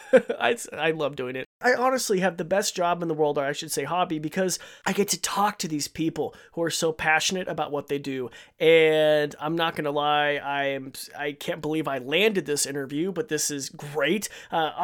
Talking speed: 215 wpm